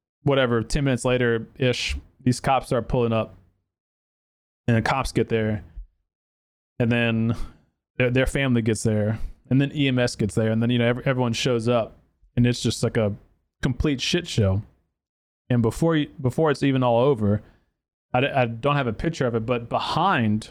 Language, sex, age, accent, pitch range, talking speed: English, male, 20-39, American, 105-130 Hz, 175 wpm